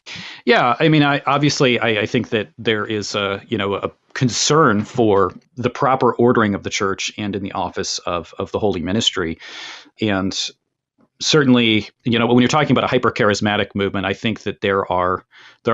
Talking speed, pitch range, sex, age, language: 185 wpm, 95-115 Hz, male, 40-59, English